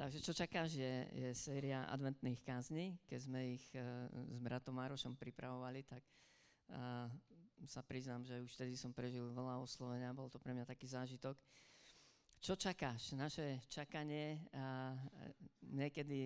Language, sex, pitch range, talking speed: Slovak, female, 125-140 Hz, 145 wpm